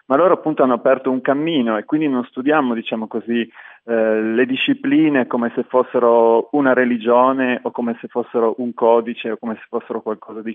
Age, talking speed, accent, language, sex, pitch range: 30-49, 190 wpm, native, Italian, male, 120-150 Hz